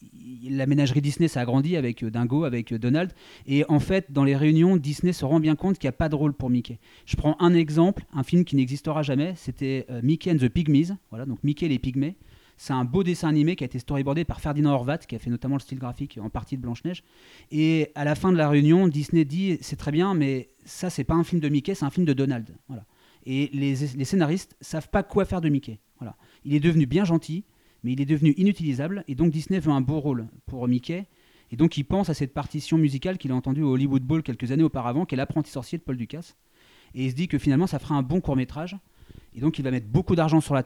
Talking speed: 250 wpm